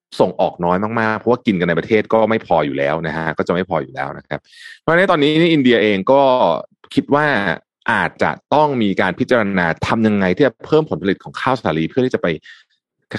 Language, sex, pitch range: Thai, male, 90-145 Hz